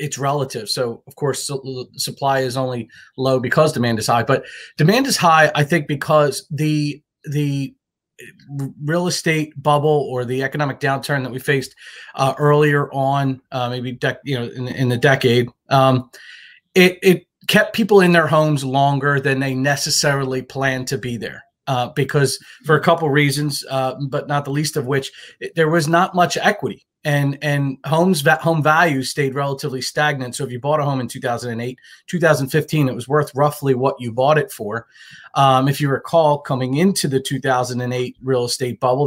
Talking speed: 180 wpm